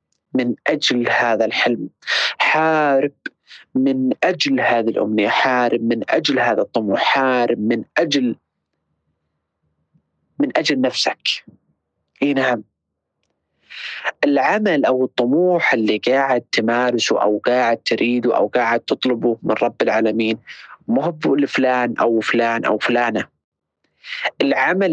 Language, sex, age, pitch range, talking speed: Arabic, male, 30-49, 110-130 Hz, 100 wpm